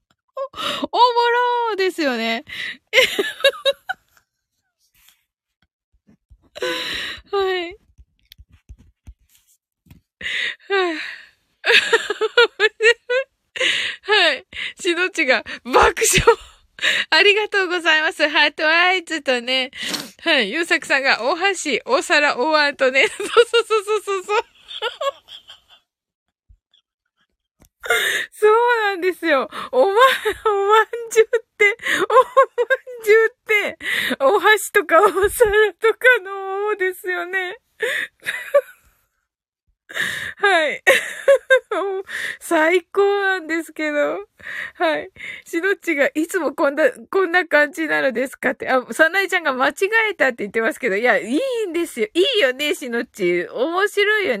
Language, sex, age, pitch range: Japanese, female, 20-39, 315-445 Hz